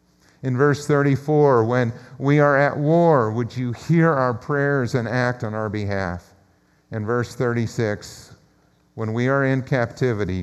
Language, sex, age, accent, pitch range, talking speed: English, male, 50-69, American, 110-145 Hz, 150 wpm